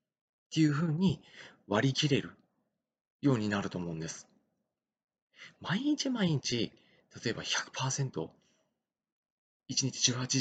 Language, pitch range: Japanese, 105-165 Hz